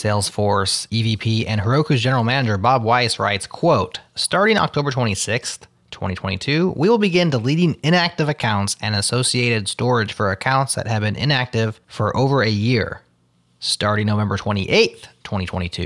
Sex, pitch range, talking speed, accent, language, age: male, 105-130 Hz, 140 wpm, American, English, 20-39